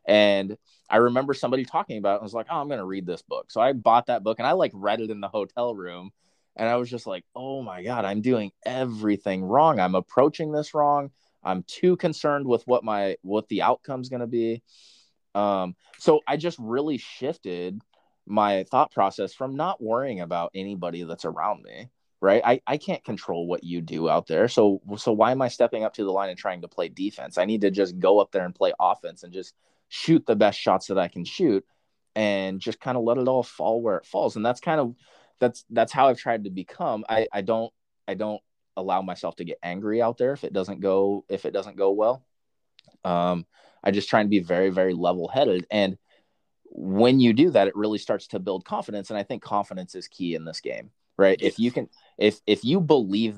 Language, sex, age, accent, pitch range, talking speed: English, male, 20-39, American, 95-125 Hz, 225 wpm